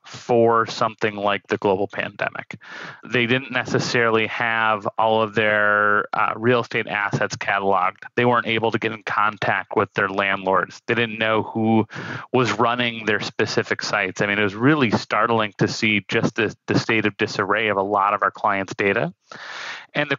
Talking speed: 175 wpm